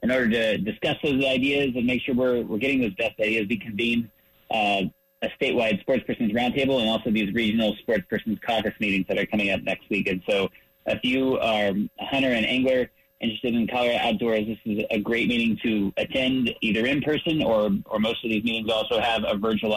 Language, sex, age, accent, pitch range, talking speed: English, male, 30-49, American, 100-125 Hz, 215 wpm